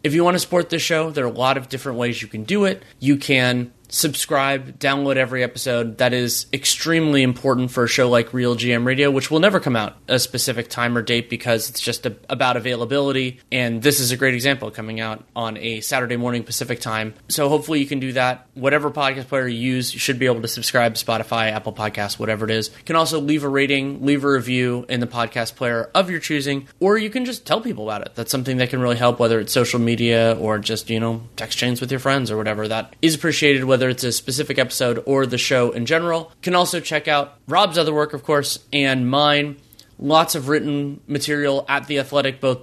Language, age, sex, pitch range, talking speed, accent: English, 30-49, male, 120-145 Hz, 235 wpm, American